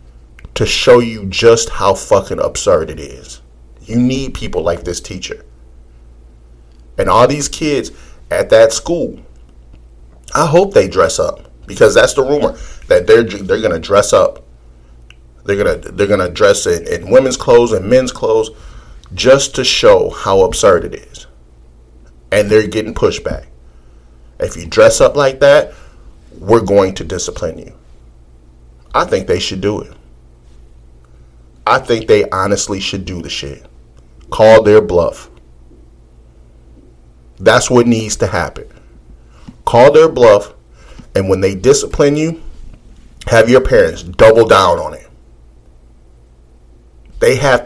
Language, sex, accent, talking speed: English, male, American, 140 wpm